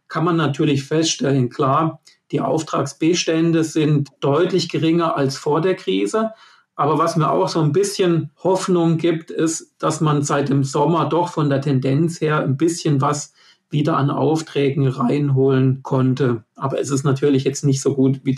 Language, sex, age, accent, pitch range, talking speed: German, male, 50-69, German, 135-155 Hz, 165 wpm